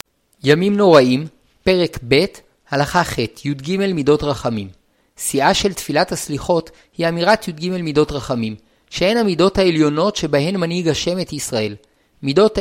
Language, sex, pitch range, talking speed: Hebrew, male, 150-195 Hz, 130 wpm